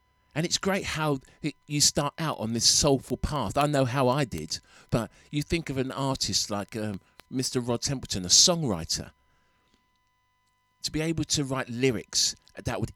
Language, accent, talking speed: English, British, 170 wpm